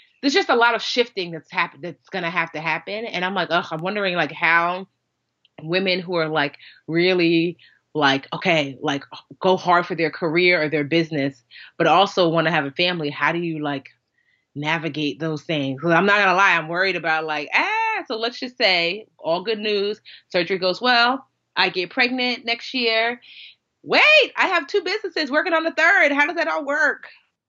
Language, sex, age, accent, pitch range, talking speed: English, female, 30-49, American, 145-190 Hz, 200 wpm